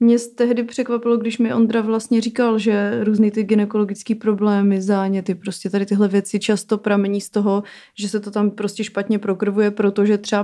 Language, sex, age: Czech, female, 30-49